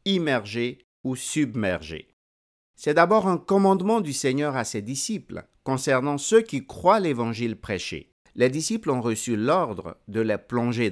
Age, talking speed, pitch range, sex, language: 60-79, 145 wpm, 100-150 Hz, male, French